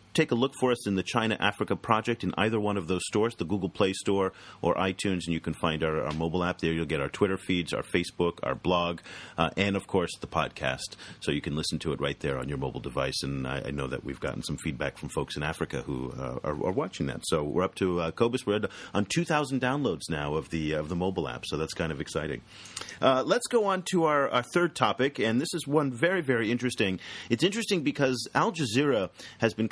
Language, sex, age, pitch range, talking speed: English, male, 40-59, 90-120 Hz, 245 wpm